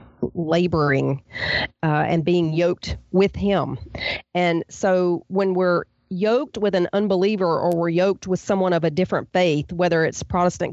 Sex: female